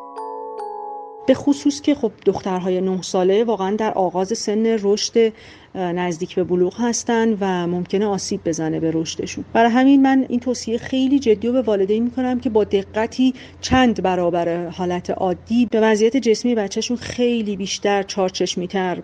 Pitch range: 180-235 Hz